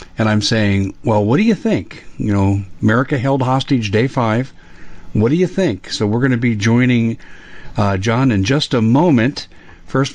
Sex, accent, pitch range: male, American, 100-140 Hz